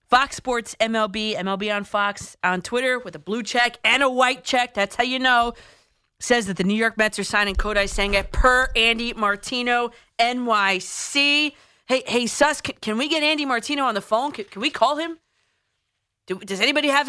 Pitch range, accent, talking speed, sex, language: 210-275 Hz, American, 195 wpm, female, English